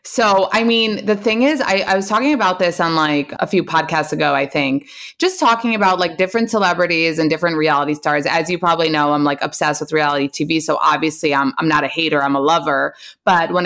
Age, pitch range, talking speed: 20-39, 150-210 Hz, 230 wpm